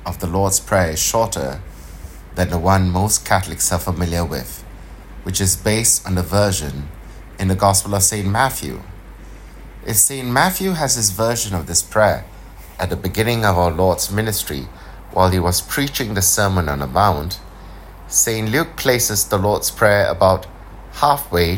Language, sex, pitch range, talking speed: English, male, 90-110 Hz, 165 wpm